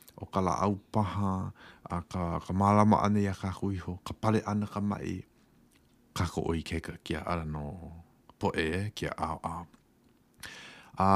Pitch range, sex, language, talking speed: 90-115 Hz, male, English, 125 wpm